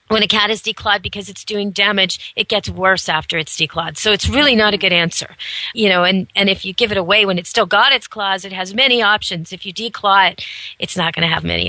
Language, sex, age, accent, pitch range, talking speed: English, female, 40-59, American, 190-235 Hz, 260 wpm